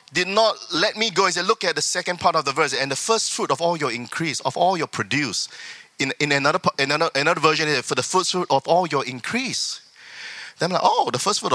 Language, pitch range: English, 140-200 Hz